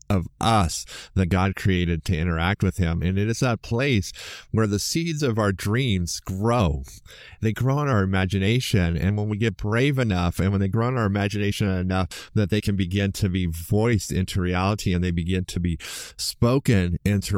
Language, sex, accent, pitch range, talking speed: English, male, American, 90-115 Hz, 195 wpm